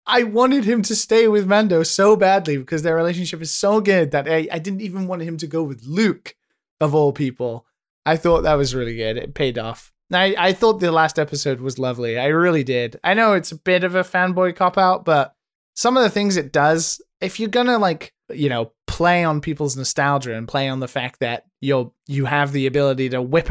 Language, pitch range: English, 140-180 Hz